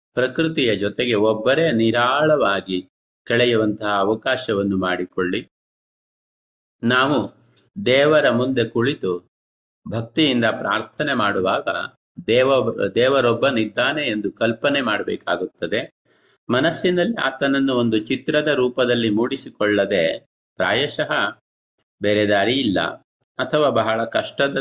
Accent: native